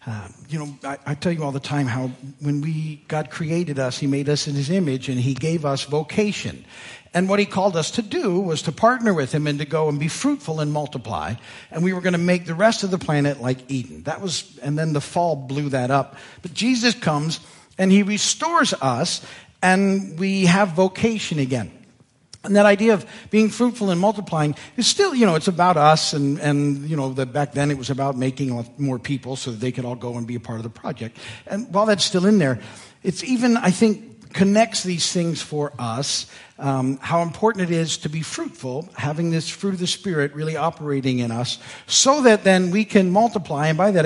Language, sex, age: English, male, 50-69